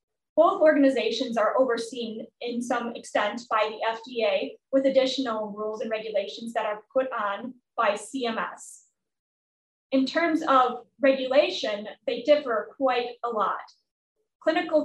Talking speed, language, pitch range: 125 wpm, English, 225-270 Hz